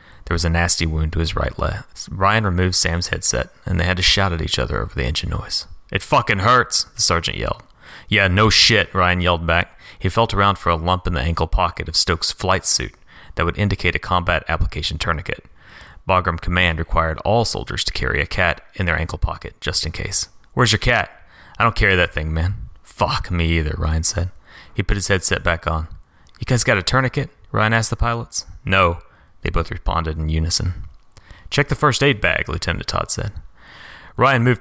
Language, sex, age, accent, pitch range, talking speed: English, male, 30-49, American, 85-95 Hz, 205 wpm